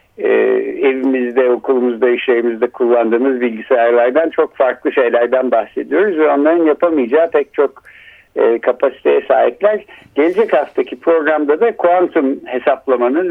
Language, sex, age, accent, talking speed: Turkish, male, 60-79, native, 110 wpm